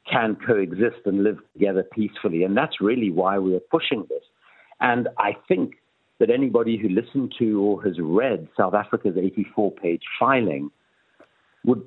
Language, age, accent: English, 60-79, British